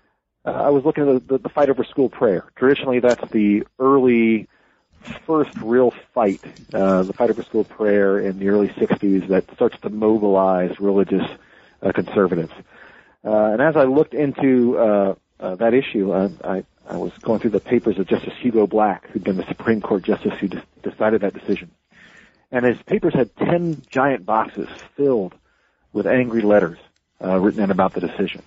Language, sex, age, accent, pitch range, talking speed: English, male, 40-59, American, 100-125 Hz, 175 wpm